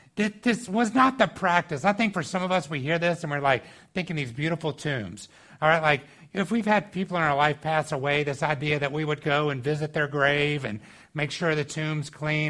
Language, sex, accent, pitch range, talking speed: English, male, American, 145-180 Hz, 235 wpm